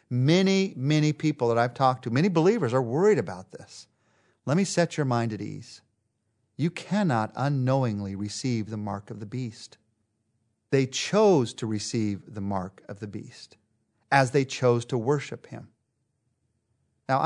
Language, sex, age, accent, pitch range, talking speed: English, male, 40-59, American, 115-160 Hz, 155 wpm